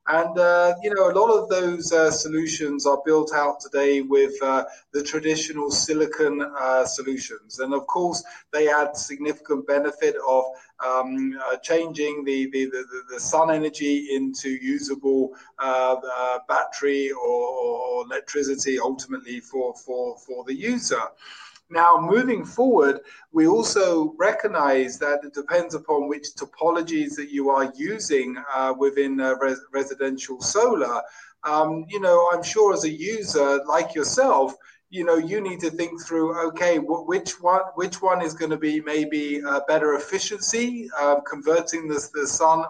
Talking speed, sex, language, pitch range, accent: 155 wpm, male, English, 140-175 Hz, British